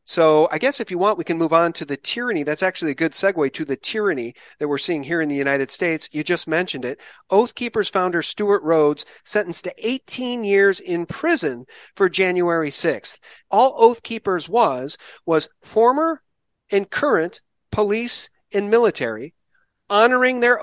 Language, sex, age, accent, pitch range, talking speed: English, male, 40-59, American, 165-230 Hz, 175 wpm